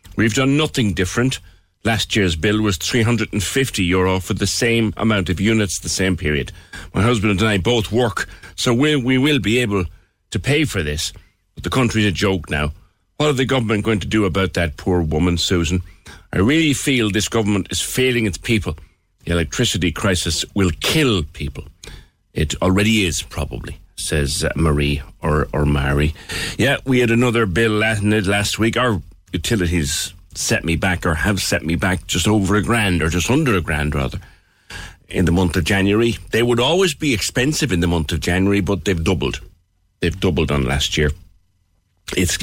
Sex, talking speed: male, 180 wpm